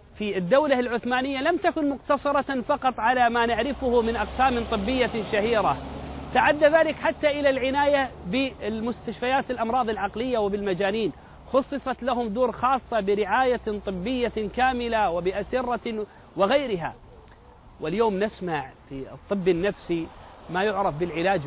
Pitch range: 200-255 Hz